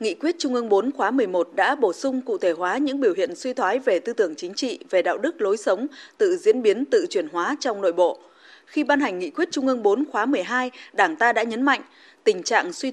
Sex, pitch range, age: female, 235-365 Hz, 20-39